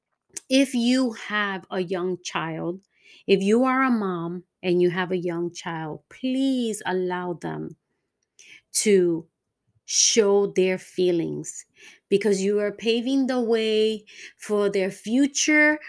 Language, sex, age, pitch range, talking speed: English, female, 30-49, 175-215 Hz, 125 wpm